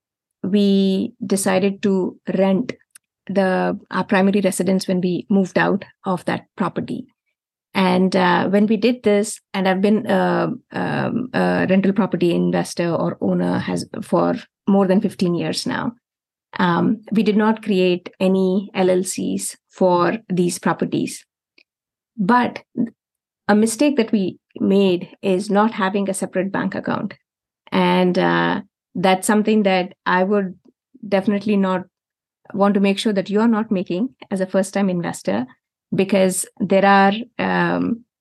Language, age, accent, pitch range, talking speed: English, 30-49, Indian, 185-210 Hz, 140 wpm